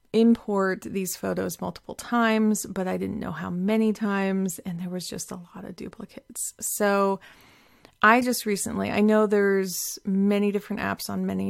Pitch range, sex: 170-215 Hz, female